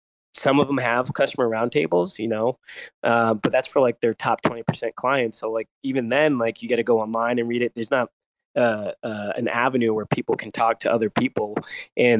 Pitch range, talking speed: 110-130 Hz, 220 wpm